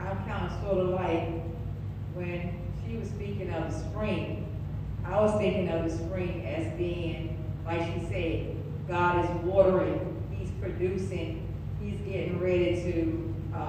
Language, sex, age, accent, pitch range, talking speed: English, female, 40-59, American, 95-125 Hz, 145 wpm